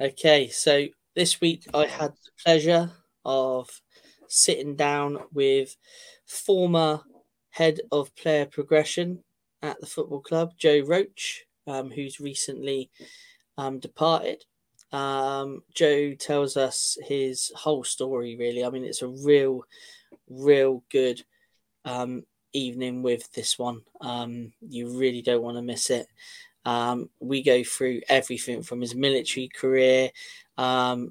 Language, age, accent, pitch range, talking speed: English, 10-29, British, 125-160 Hz, 125 wpm